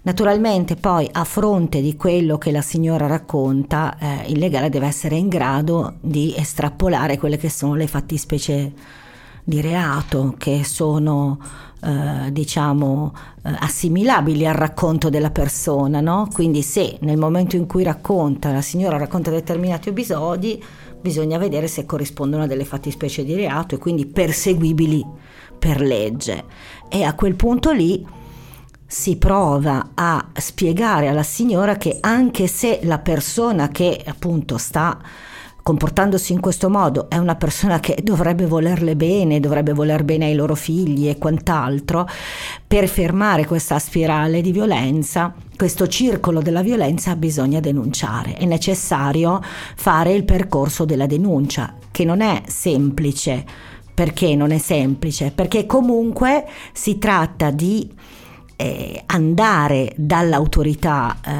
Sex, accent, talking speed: female, native, 130 wpm